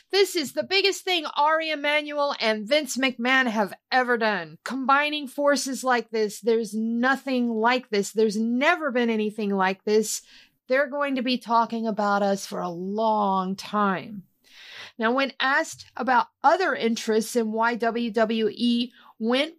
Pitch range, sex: 215-275 Hz, female